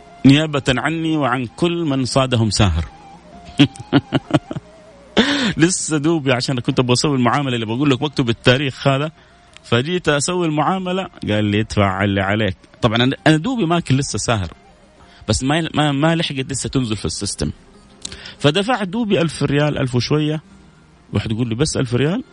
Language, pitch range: Arabic, 110-160 Hz